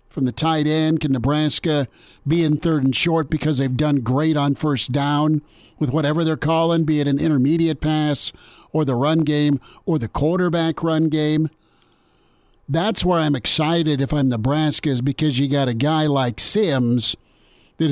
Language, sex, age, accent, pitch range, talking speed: English, male, 50-69, American, 135-160 Hz, 175 wpm